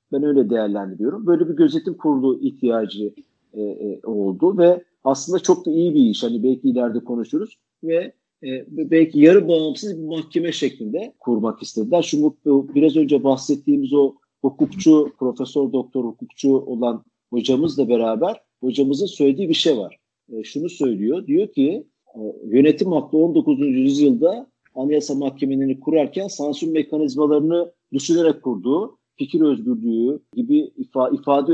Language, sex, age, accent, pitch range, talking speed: Turkish, male, 50-69, native, 135-200 Hz, 135 wpm